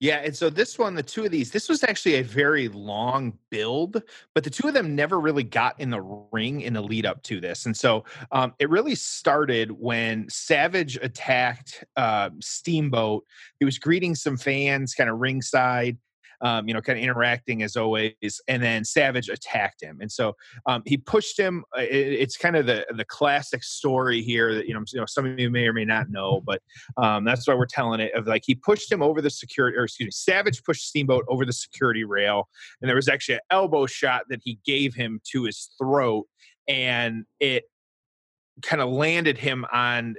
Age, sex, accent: 30-49, male, American